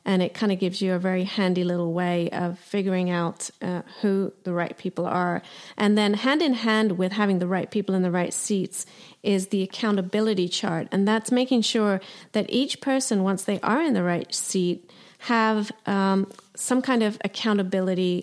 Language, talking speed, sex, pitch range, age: English, 190 wpm, female, 180-215 Hz, 30-49